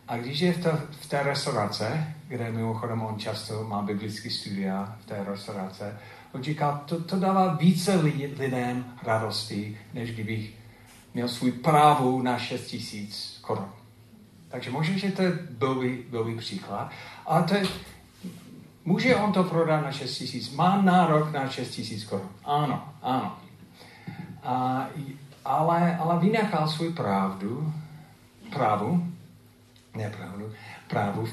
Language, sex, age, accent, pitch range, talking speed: Czech, male, 40-59, native, 110-150 Hz, 130 wpm